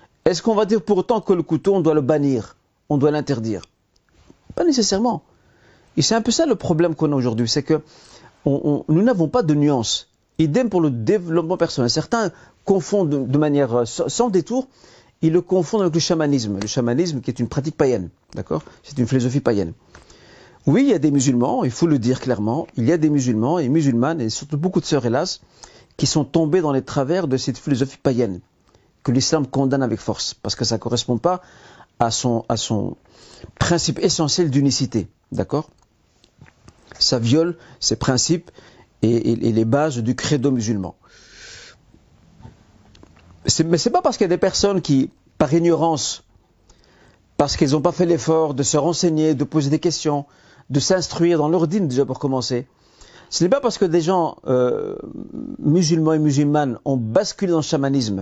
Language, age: French, 50-69